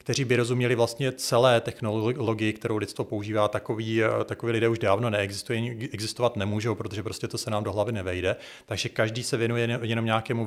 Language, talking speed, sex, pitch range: Czech, 185 wpm, male, 105-120 Hz